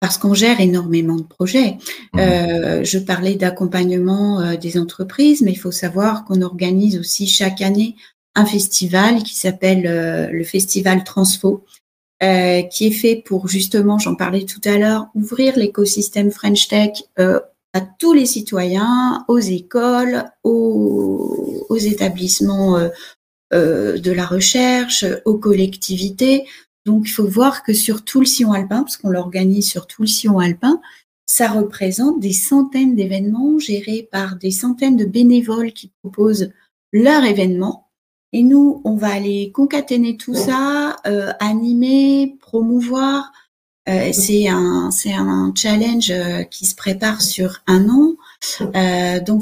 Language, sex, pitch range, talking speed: French, female, 185-235 Hz, 145 wpm